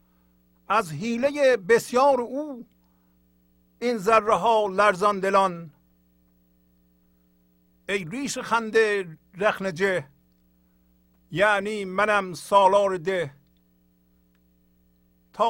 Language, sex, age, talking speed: English, male, 50-69, 65 wpm